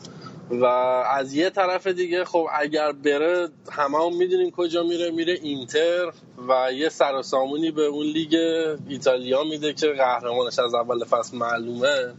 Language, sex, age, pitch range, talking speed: Persian, male, 20-39, 125-155 Hz, 145 wpm